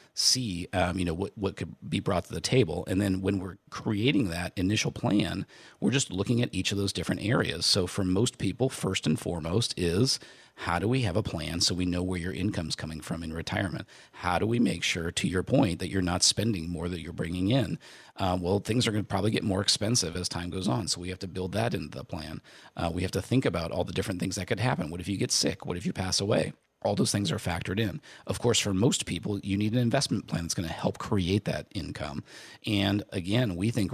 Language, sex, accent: English, male, American